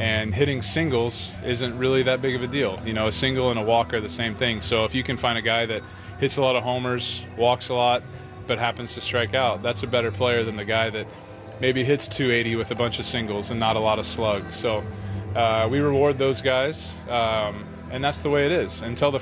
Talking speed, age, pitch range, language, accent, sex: 245 wpm, 20-39, 105-125 Hz, English, American, male